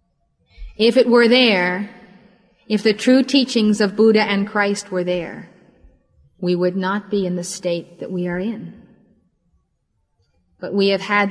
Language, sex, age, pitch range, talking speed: English, female, 30-49, 175-220 Hz, 155 wpm